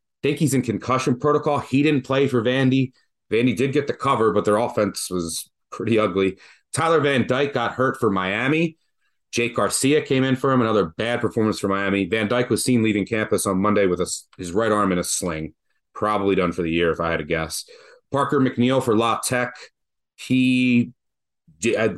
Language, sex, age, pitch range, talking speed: English, male, 30-49, 95-130 Hz, 195 wpm